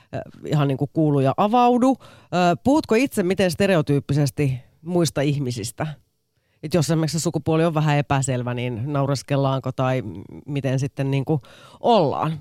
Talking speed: 120 wpm